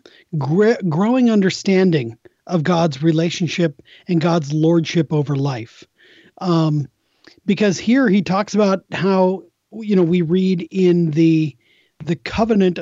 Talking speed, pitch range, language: 115 wpm, 165-205 Hz, English